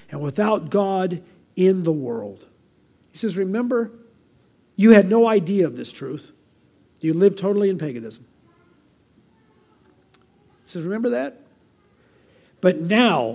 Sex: male